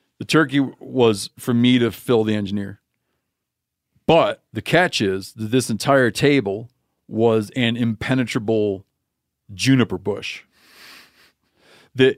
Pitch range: 105-135 Hz